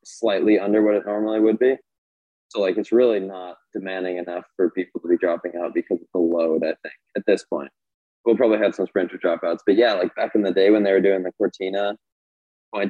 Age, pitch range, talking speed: 20-39, 85-105 Hz, 230 wpm